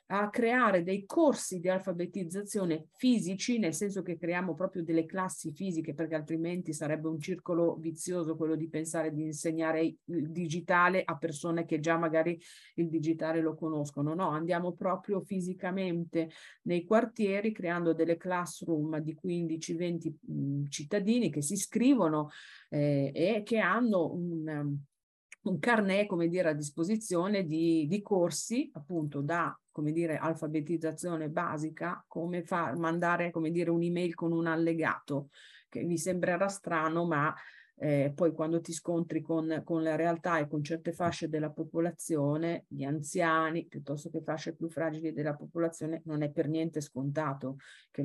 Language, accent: Italian, native